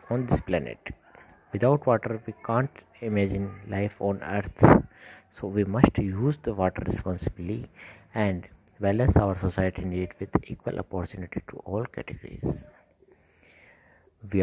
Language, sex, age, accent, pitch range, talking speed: Hindi, male, 60-79, native, 95-115 Hz, 125 wpm